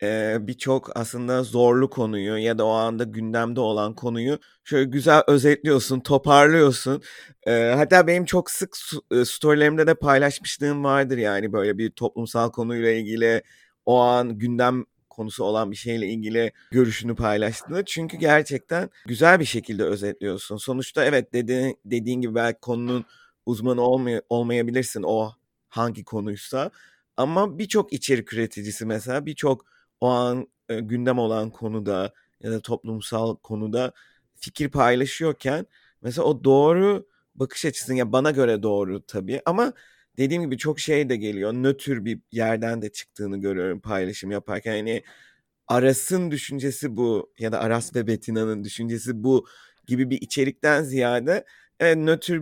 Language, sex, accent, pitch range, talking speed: Turkish, male, native, 115-140 Hz, 140 wpm